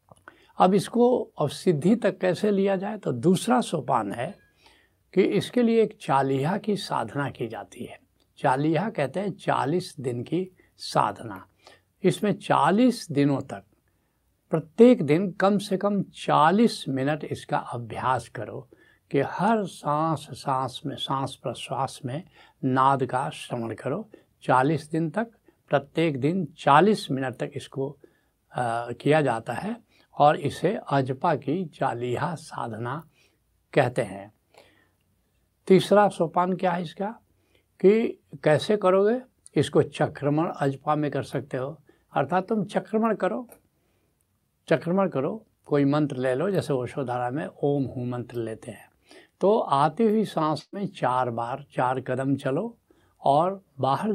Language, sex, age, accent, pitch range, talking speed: Hindi, male, 70-89, native, 130-190 Hz, 135 wpm